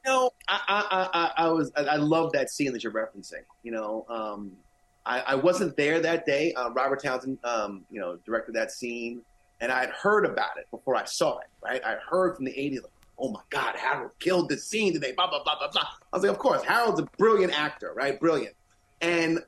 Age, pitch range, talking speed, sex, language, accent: 30-49, 145-225 Hz, 235 wpm, male, English, American